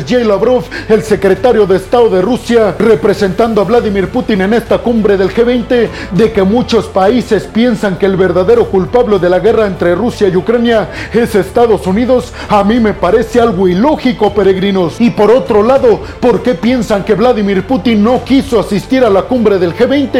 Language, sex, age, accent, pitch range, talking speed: Spanish, male, 40-59, Mexican, 195-235 Hz, 180 wpm